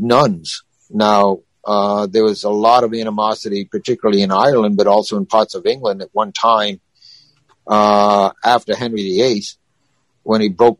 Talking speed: 155 wpm